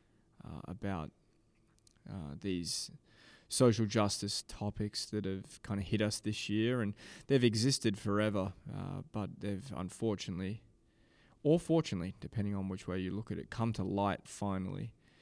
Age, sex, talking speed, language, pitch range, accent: 20-39, male, 145 wpm, English, 100-115 Hz, Australian